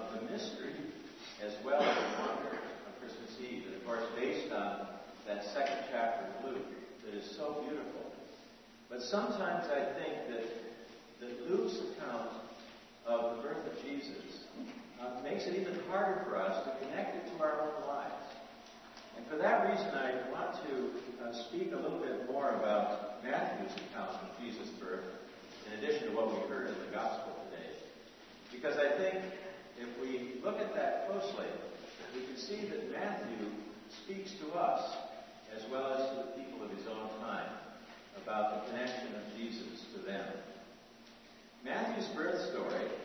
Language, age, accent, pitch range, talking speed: English, 50-69, American, 120-195 Hz, 165 wpm